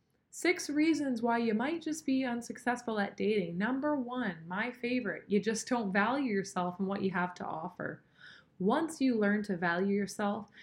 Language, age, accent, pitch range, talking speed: English, 20-39, American, 180-220 Hz, 175 wpm